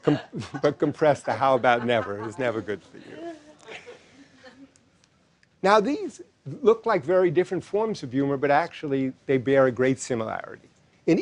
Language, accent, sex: Chinese, American, male